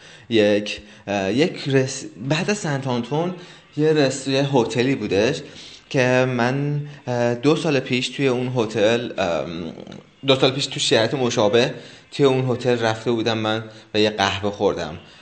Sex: male